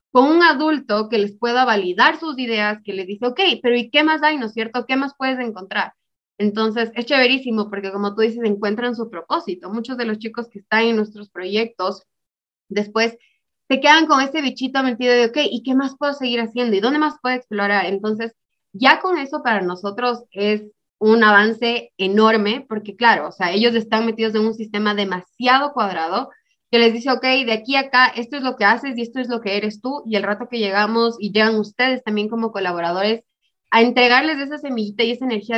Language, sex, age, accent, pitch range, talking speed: Spanish, female, 20-39, Mexican, 205-250 Hz, 210 wpm